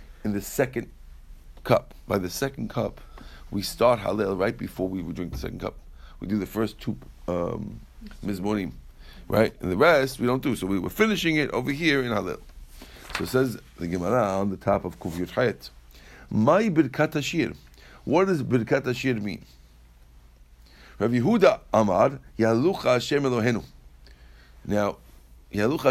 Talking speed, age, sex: 155 wpm, 60-79, male